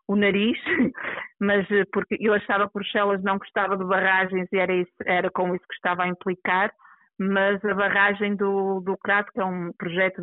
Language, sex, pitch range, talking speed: Portuguese, female, 190-215 Hz, 180 wpm